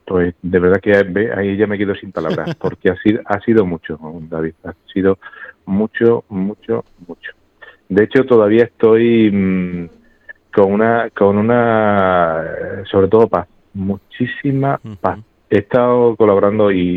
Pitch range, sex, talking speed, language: 95-115 Hz, male, 140 wpm, Spanish